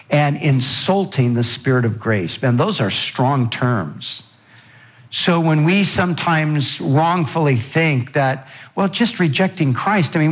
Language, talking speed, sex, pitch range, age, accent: English, 140 wpm, male, 125-165 Hz, 60-79, American